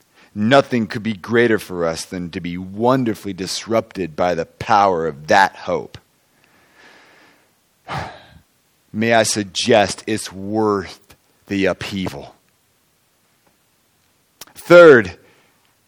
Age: 40-59